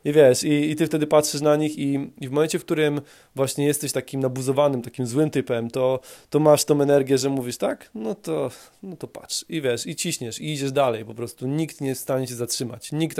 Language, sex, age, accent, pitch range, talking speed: Polish, male, 20-39, native, 125-150 Hz, 235 wpm